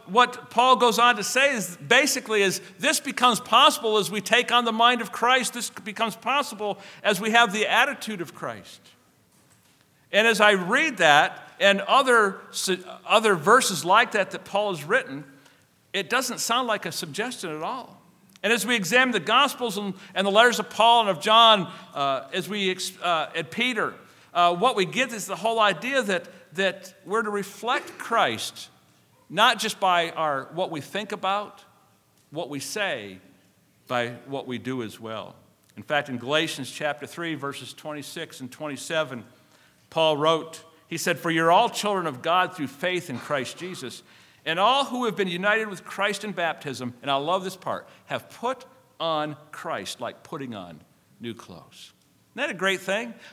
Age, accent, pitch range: 50-69, American, 165-235 Hz